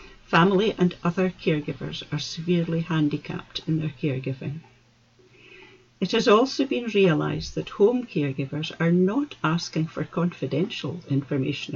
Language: English